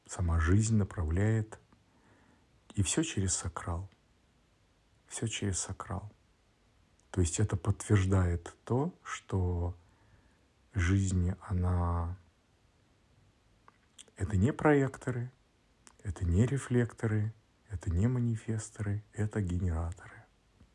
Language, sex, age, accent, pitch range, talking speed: Russian, male, 50-69, native, 90-105 Hz, 85 wpm